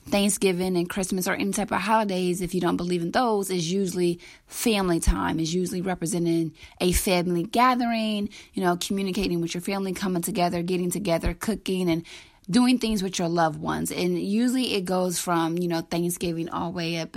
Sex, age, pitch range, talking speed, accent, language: female, 20-39, 170-205 Hz, 190 wpm, American, English